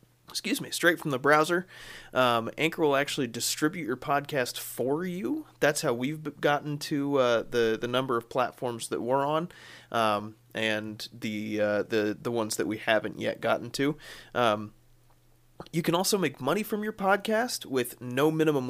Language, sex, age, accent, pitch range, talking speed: English, male, 30-49, American, 115-145 Hz, 165 wpm